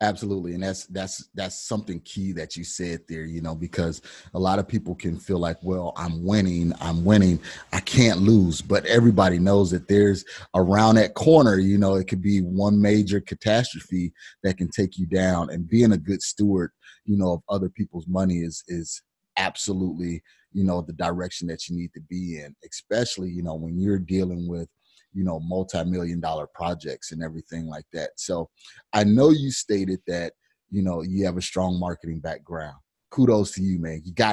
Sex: male